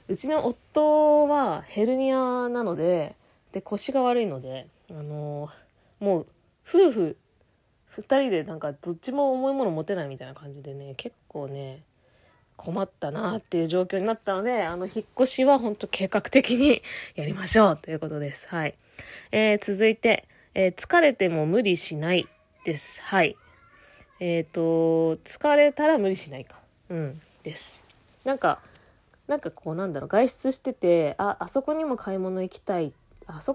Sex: female